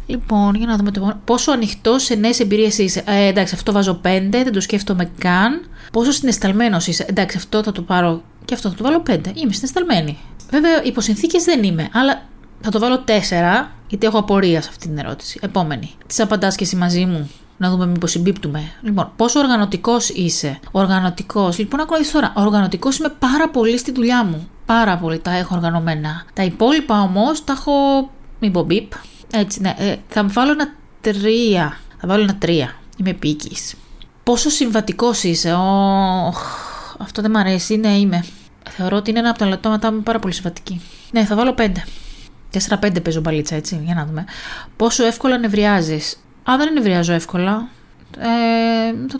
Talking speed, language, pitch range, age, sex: 170 wpm, Greek, 180-235 Hz, 30-49, female